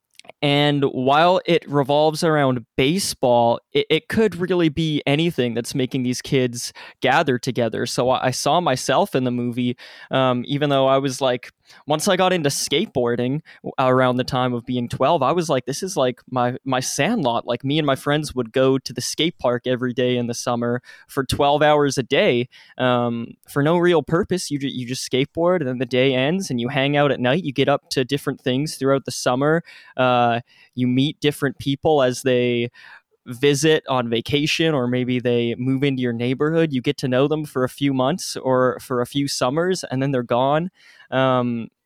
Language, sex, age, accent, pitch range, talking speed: English, male, 20-39, American, 125-145 Hz, 200 wpm